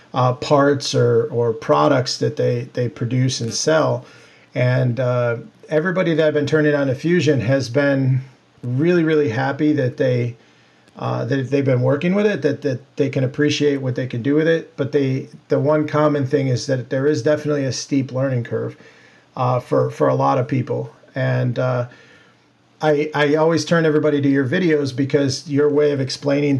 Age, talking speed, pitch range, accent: 40-59, 185 wpm, 125-150 Hz, American